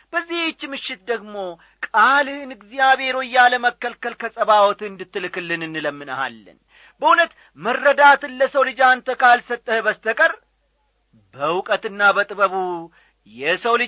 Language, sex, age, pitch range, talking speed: English, male, 40-59, 185-250 Hz, 100 wpm